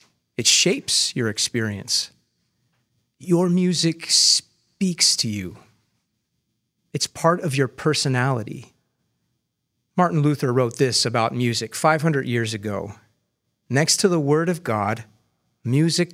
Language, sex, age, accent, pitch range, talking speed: English, male, 30-49, American, 115-155 Hz, 110 wpm